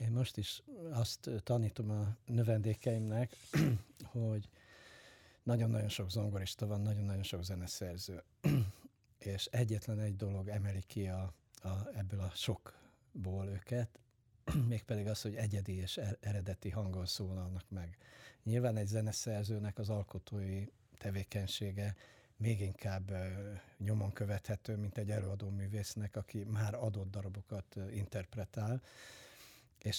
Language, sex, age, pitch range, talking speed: Hungarian, male, 60-79, 100-115 Hz, 110 wpm